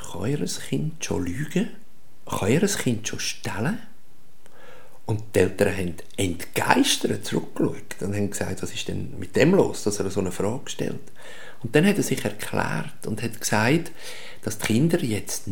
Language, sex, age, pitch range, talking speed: German, male, 50-69, 110-175 Hz, 170 wpm